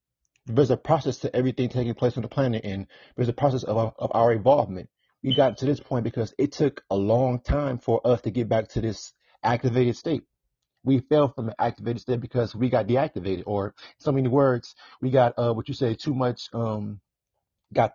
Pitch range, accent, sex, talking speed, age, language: 100-120 Hz, American, male, 205 wpm, 30-49, English